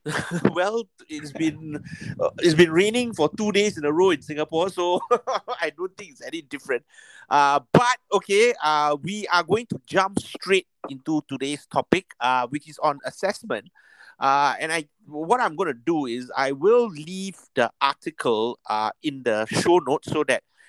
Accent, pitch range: Malaysian, 135-195 Hz